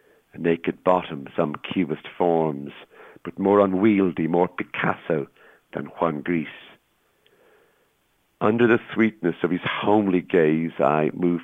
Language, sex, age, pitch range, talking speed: English, male, 60-79, 75-85 Hz, 115 wpm